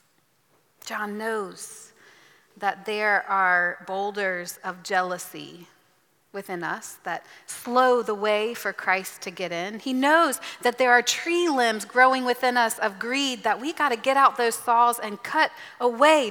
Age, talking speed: 30-49, 155 wpm